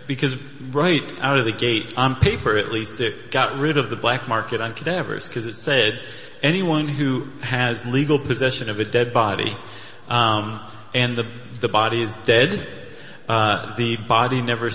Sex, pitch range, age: male, 110-140 Hz, 30-49